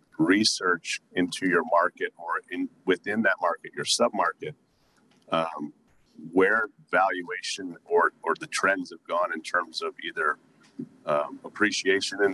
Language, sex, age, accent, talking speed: English, male, 40-59, American, 130 wpm